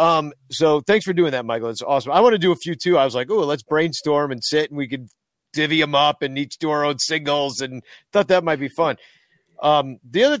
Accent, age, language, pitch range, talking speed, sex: American, 40-59, English, 130-165 Hz, 260 wpm, male